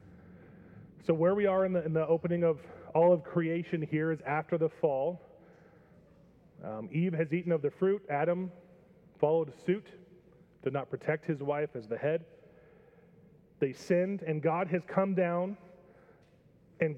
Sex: male